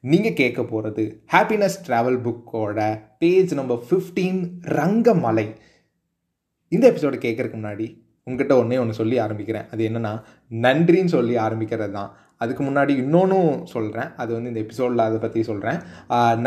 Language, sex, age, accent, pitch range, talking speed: Tamil, male, 20-39, native, 125-180 Hz, 130 wpm